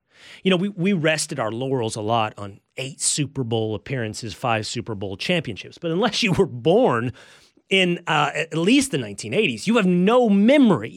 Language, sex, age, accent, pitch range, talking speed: English, male, 30-49, American, 120-190 Hz, 180 wpm